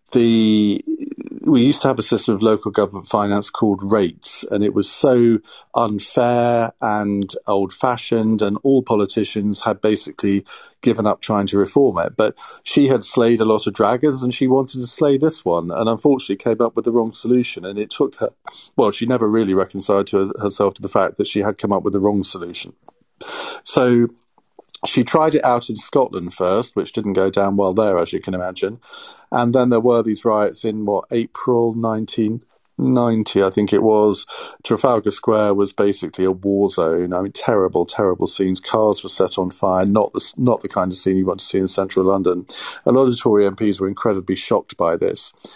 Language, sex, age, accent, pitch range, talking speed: English, male, 40-59, British, 100-120 Hz, 200 wpm